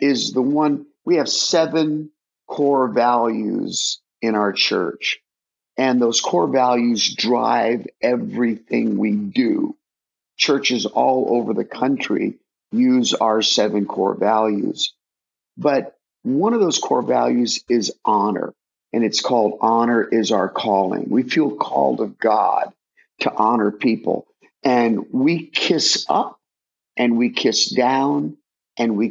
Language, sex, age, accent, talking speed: English, male, 50-69, American, 130 wpm